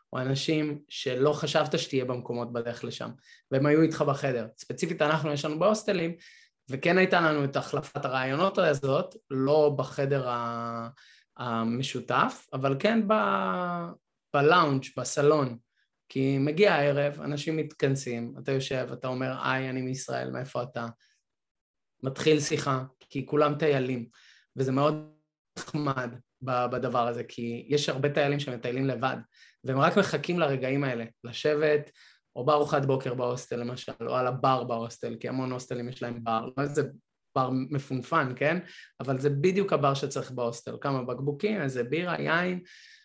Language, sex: Hebrew, male